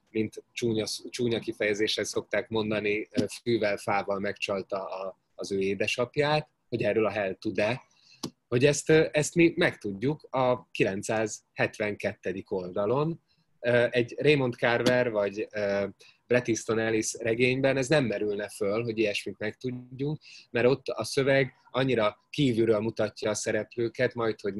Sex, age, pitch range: male, 20-39, 105-125 Hz